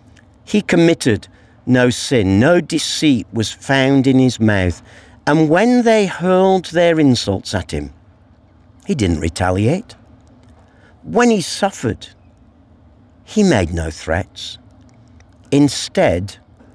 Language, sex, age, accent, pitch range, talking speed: English, male, 50-69, British, 100-140 Hz, 110 wpm